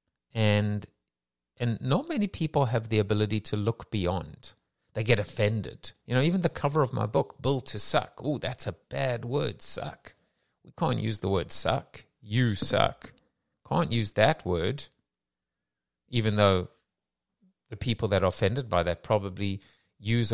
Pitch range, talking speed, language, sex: 95-115 Hz, 160 wpm, English, male